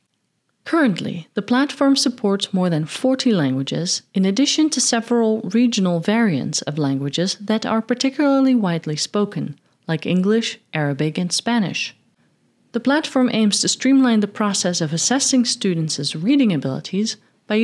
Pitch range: 175-255 Hz